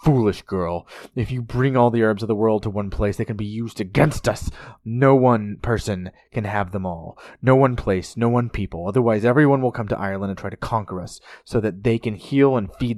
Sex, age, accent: male, 30-49, American